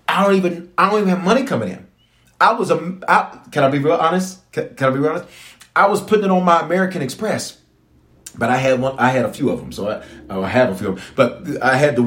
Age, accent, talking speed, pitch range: 40-59, American, 275 wpm, 125-190 Hz